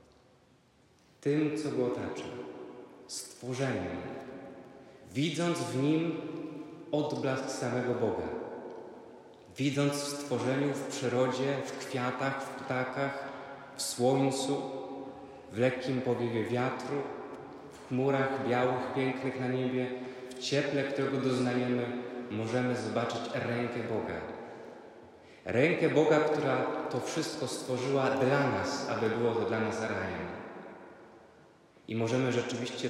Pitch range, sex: 110-135 Hz, male